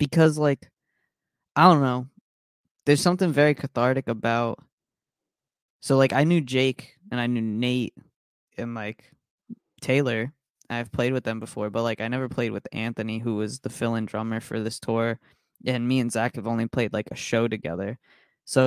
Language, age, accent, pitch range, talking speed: English, 20-39, American, 115-135 Hz, 175 wpm